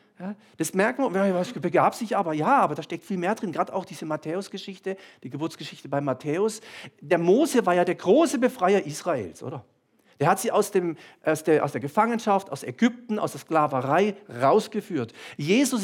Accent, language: German, German